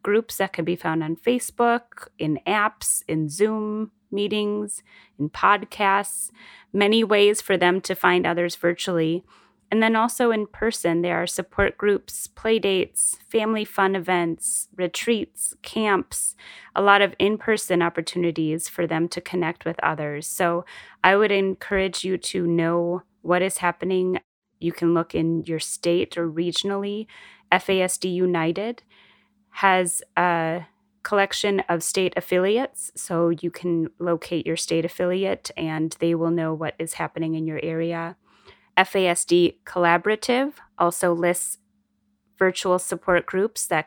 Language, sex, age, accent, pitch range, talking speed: English, female, 30-49, American, 165-205 Hz, 135 wpm